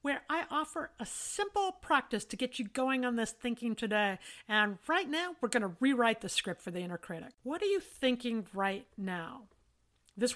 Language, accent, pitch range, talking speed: English, American, 220-285 Hz, 195 wpm